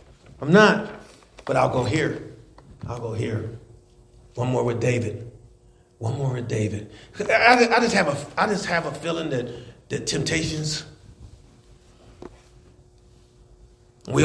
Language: English